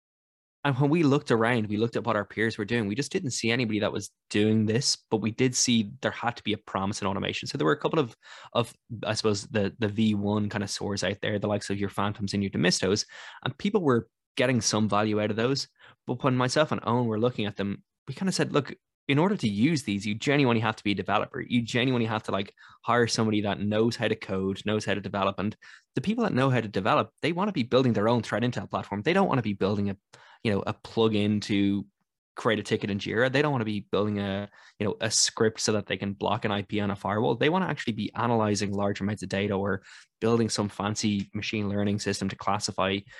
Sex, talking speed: male, 260 wpm